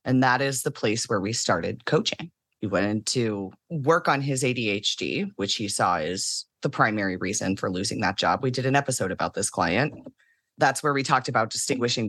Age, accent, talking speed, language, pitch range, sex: 30-49, American, 200 wpm, English, 120-150 Hz, female